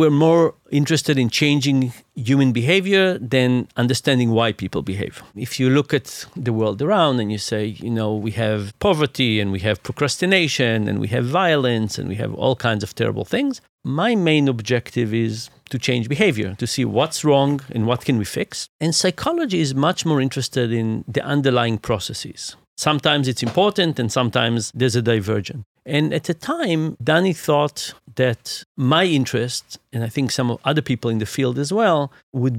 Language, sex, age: English, male, 50-69